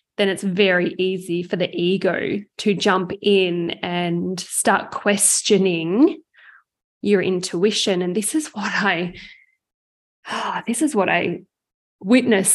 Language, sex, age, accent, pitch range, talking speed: English, female, 20-39, Australian, 185-220 Hz, 125 wpm